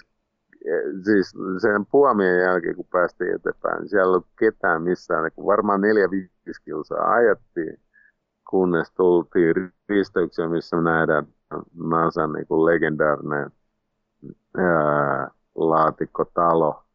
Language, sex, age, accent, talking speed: Finnish, male, 50-69, native, 90 wpm